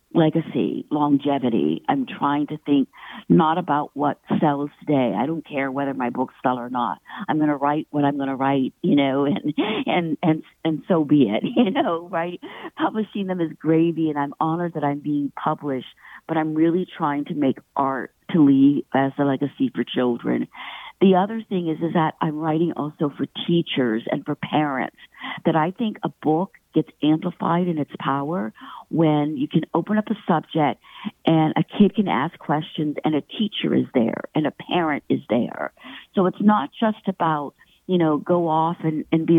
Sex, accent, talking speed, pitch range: female, American, 190 wpm, 145-180 Hz